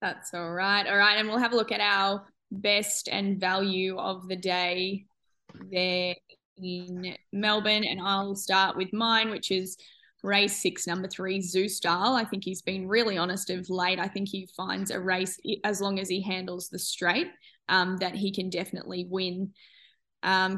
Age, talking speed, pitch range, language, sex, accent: 10-29, 180 wpm, 185-205 Hz, English, female, Australian